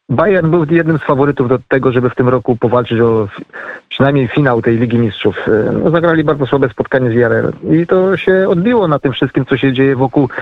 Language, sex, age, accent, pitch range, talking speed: Polish, male, 30-49, native, 130-165 Hz, 205 wpm